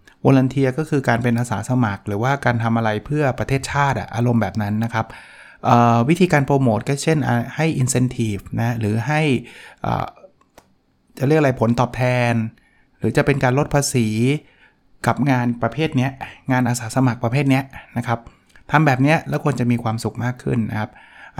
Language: Thai